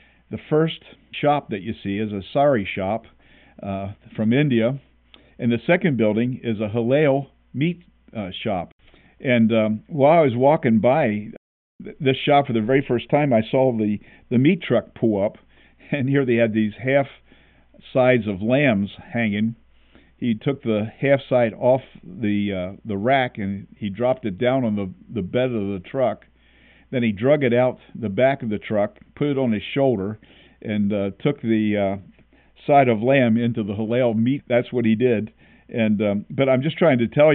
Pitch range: 105-130 Hz